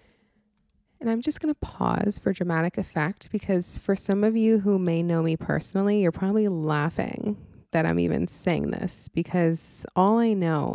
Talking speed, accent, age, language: 175 wpm, American, 20-39, English